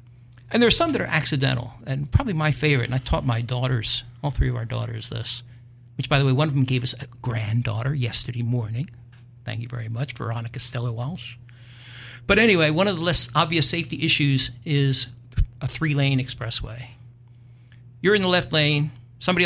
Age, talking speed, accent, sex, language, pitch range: 60-79, 190 wpm, American, male, English, 120-140 Hz